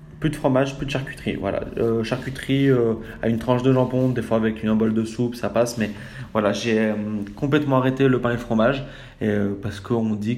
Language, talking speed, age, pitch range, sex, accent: French, 235 wpm, 20-39, 110-130 Hz, male, French